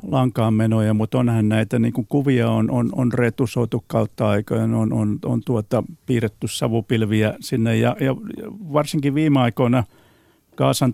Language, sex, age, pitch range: Finnish, male, 50-69, 110-130 Hz